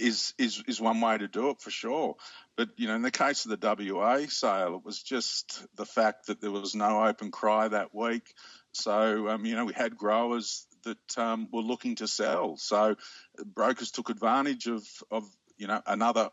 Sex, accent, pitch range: male, Australian, 110-125 Hz